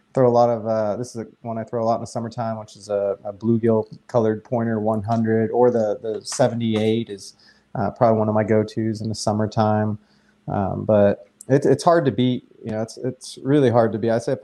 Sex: male